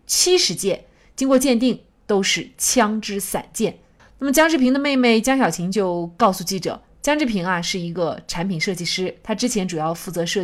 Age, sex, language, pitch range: 30-49, female, Chinese, 185-265 Hz